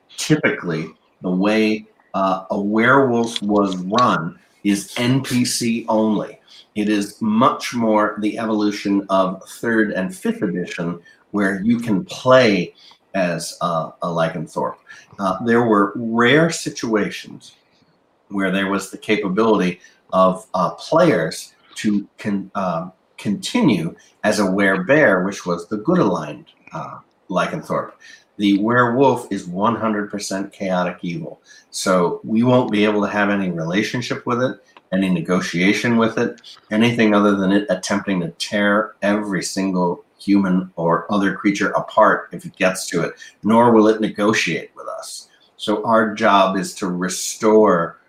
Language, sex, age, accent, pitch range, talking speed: English, male, 50-69, American, 95-115 Hz, 135 wpm